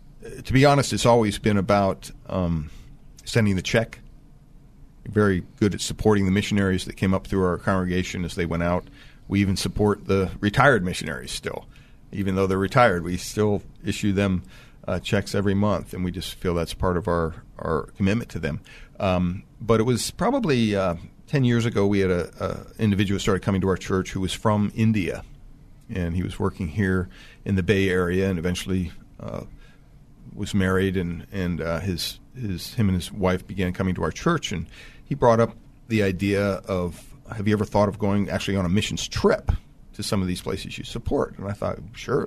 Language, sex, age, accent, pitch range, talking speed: English, male, 40-59, American, 90-105 Hz, 195 wpm